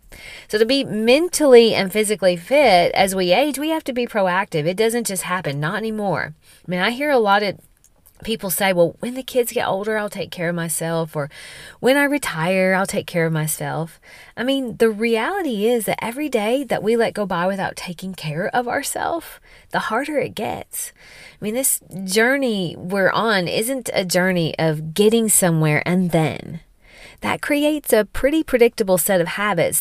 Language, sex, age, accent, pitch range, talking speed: English, female, 30-49, American, 185-260 Hz, 190 wpm